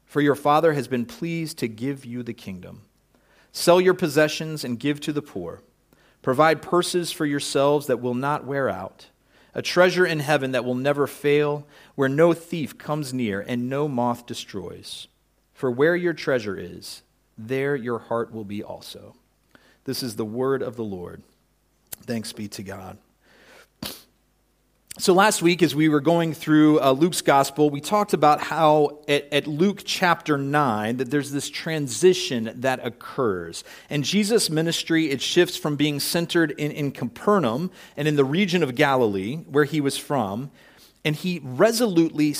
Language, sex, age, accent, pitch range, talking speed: English, male, 40-59, American, 130-165 Hz, 165 wpm